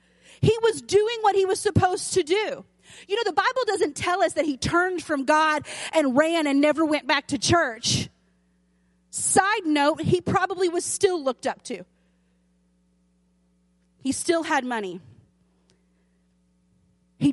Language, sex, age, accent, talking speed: English, female, 30-49, American, 150 wpm